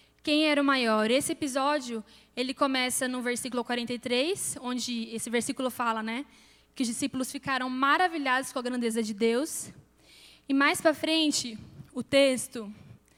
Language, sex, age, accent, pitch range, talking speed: Portuguese, female, 10-29, Brazilian, 230-280 Hz, 145 wpm